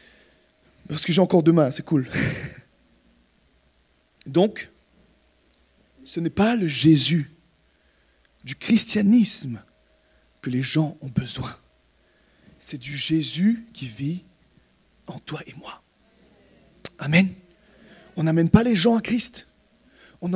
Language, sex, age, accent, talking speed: French, male, 40-59, French, 110 wpm